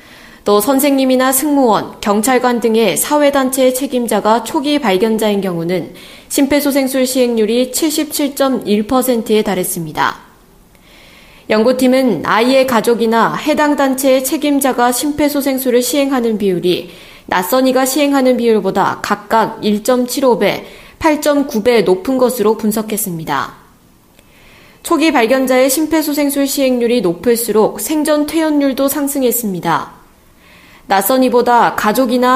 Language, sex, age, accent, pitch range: Korean, female, 20-39, native, 210-275 Hz